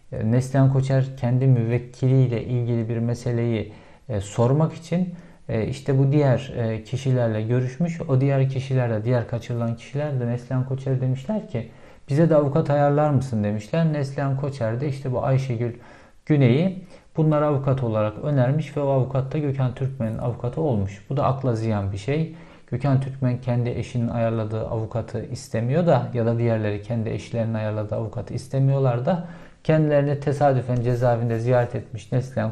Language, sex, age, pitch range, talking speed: Turkish, male, 50-69, 115-140 Hz, 150 wpm